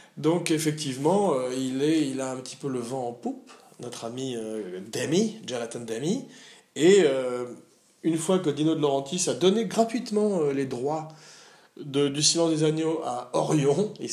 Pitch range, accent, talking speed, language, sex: 120-165 Hz, French, 170 wpm, French, male